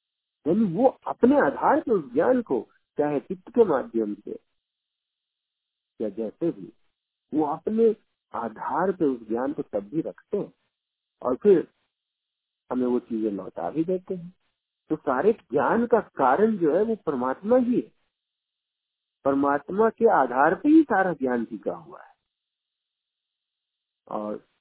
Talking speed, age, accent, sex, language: 140 wpm, 50-69, native, male, Hindi